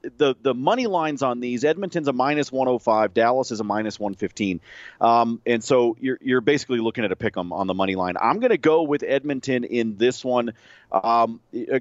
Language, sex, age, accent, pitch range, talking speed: English, male, 40-59, American, 105-135 Hz, 225 wpm